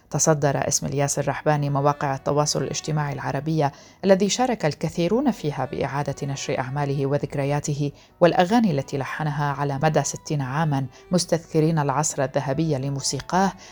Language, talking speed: Arabic, 120 wpm